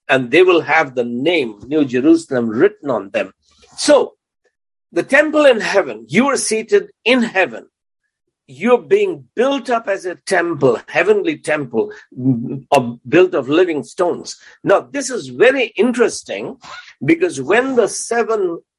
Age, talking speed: 60-79, 135 wpm